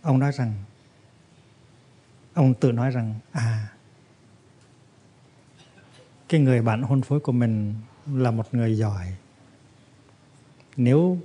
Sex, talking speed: male, 105 wpm